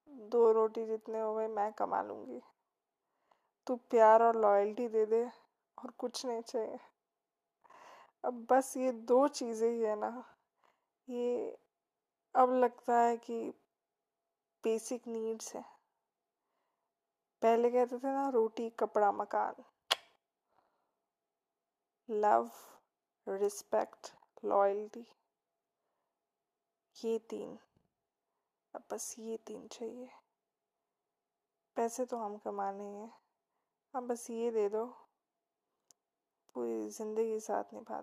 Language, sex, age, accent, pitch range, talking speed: Hindi, female, 20-39, native, 220-240 Hz, 105 wpm